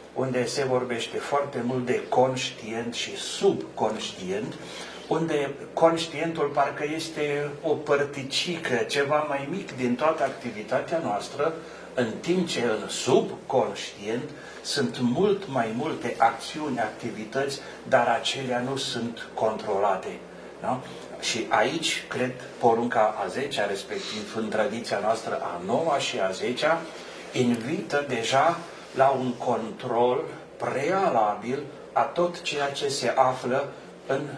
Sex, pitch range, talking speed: male, 125-145 Hz, 115 wpm